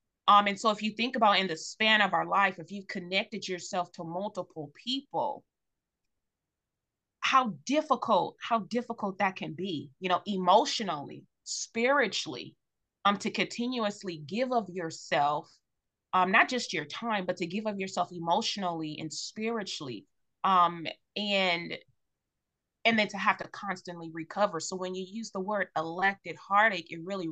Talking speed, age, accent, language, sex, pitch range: 150 wpm, 20-39, American, English, female, 170-210 Hz